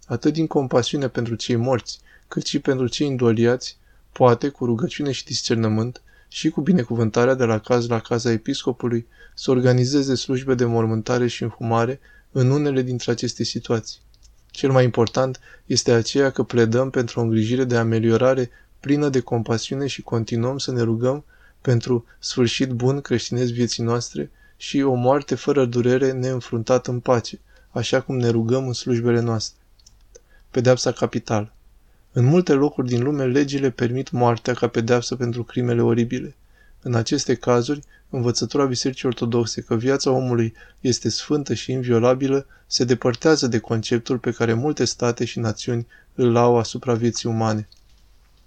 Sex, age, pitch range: male, 20-39, 115-130 Hz